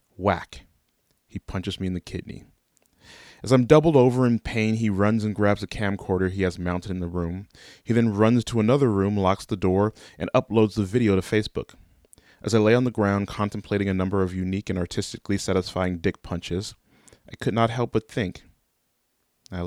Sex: male